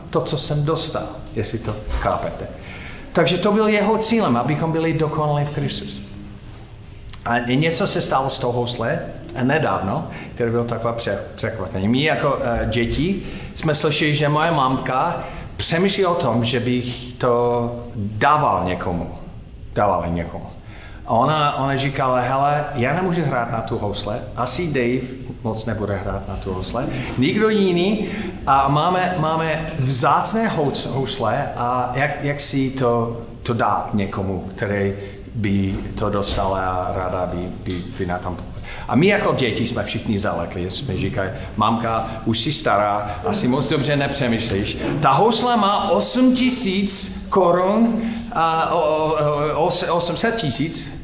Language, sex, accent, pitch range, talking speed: Czech, male, native, 105-160 Hz, 150 wpm